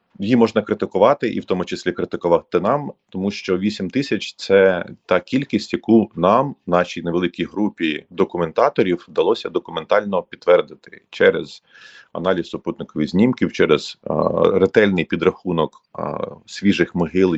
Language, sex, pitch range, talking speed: Ukrainian, male, 85-110 Hz, 120 wpm